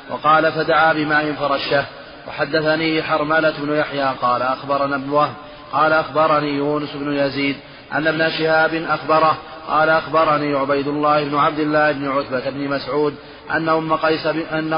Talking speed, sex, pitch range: 140 wpm, male, 140-160 Hz